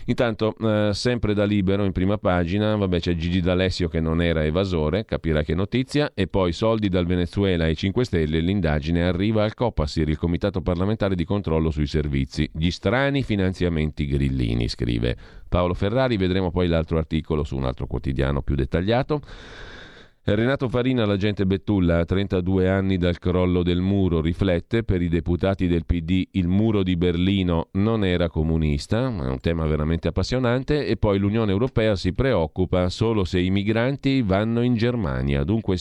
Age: 40-59